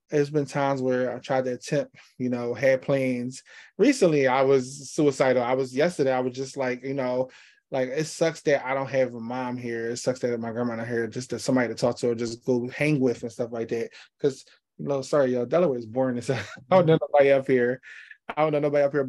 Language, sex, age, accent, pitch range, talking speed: English, male, 20-39, American, 125-145 Hz, 250 wpm